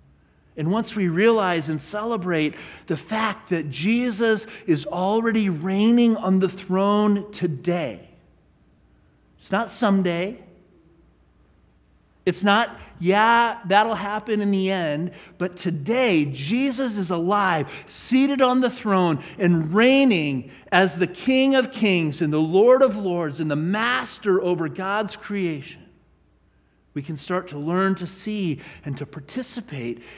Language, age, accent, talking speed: English, 40-59, American, 130 wpm